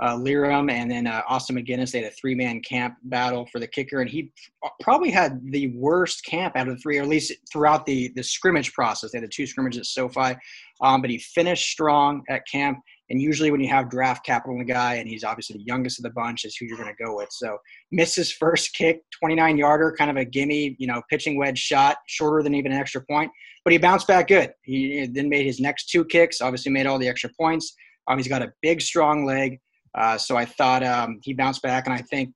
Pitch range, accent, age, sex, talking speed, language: 125-155 Hz, American, 20-39, male, 245 wpm, English